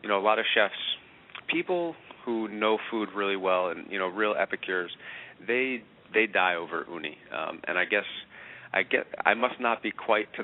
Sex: male